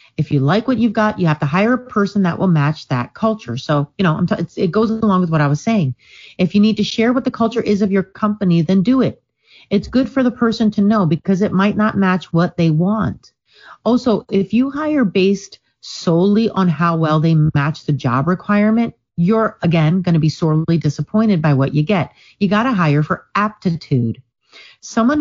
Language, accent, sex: English, American, female